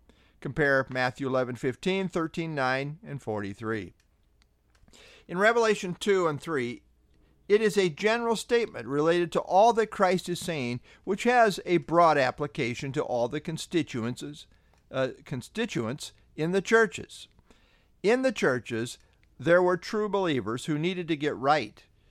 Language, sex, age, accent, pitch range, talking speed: English, male, 50-69, American, 125-190 Hz, 135 wpm